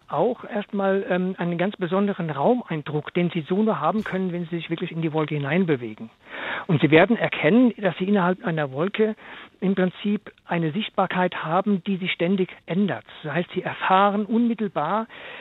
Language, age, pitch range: German, 50-69, 160-200 Hz